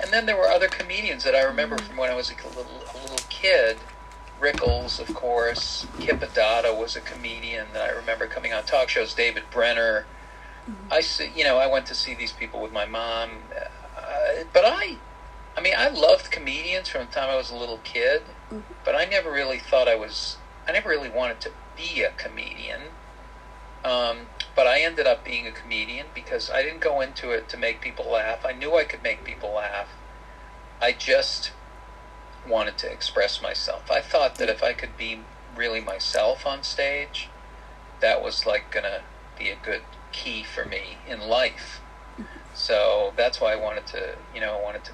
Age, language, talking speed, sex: 40-59, English, 190 wpm, male